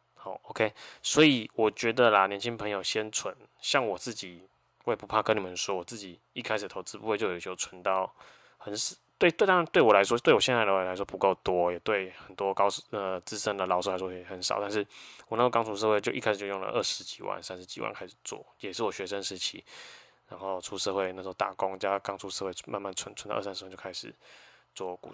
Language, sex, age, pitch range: Chinese, male, 20-39, 90-110 Hz